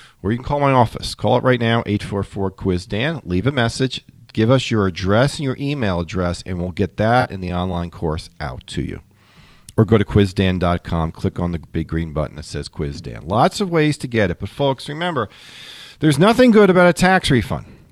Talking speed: 210 wpm